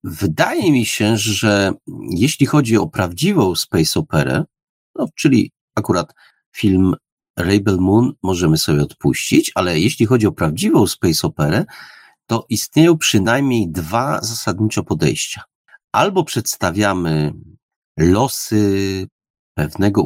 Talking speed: 110 wpm